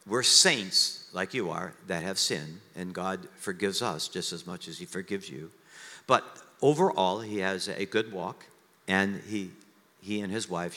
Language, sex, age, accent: English, male, 50-69, American